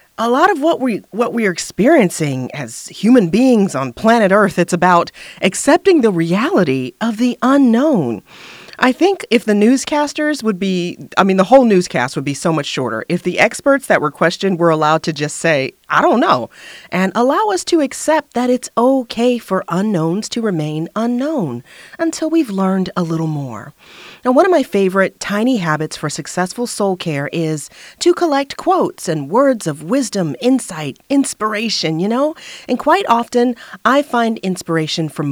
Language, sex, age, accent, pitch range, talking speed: English, female, 30-49, American, 160-245 Hz, 175 wpm